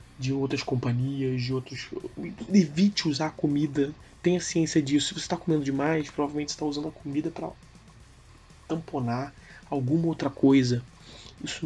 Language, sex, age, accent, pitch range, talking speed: Portuguese, male, 20-39, Brazilian, 125-160 Hz, 150 wpm